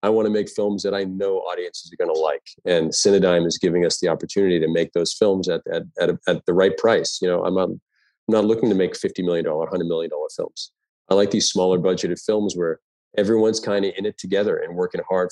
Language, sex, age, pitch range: English, male, 40-59, 95-115 Hz